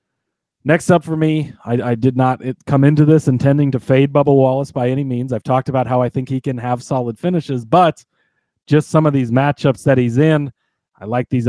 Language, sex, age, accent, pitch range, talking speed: English, male, 30-49, American, 120-145 Hz, 220 wpm